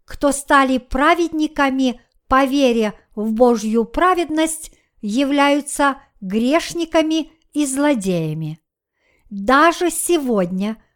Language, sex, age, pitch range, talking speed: Russian, male, 50-69, 240-325 Hz, 75 wpm